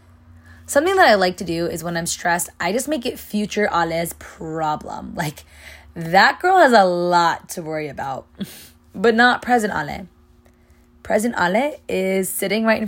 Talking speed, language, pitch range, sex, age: 170 wpm, English, 165-220 Hz, female, 20-39